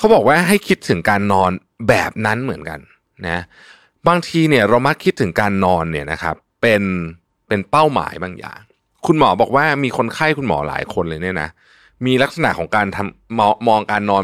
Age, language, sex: 20-39, Thai, male